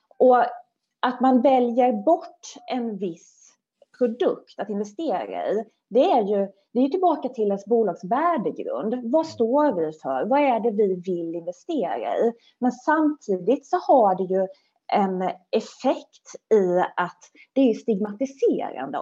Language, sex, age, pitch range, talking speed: Swedish, female, 20-39, 190-280 Hz, 140 wpm